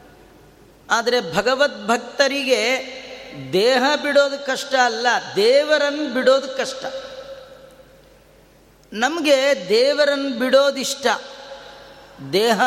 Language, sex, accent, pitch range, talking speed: Kannada, female, native, 235-275 Hz, 65 wpm